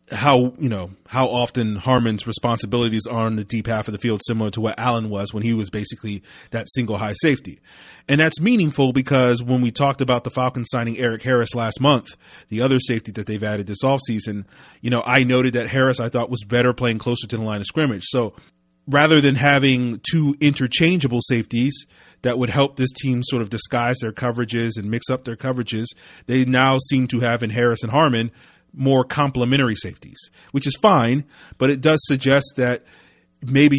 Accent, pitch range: American, 115-130 Hz